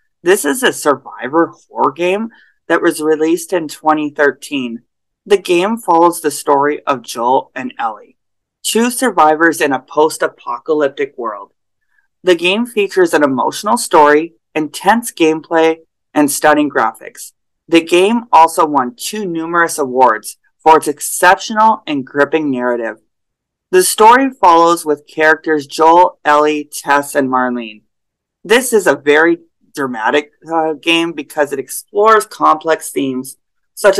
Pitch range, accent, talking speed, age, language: 145-190 Hz, American, 130 wpm, 30-49, English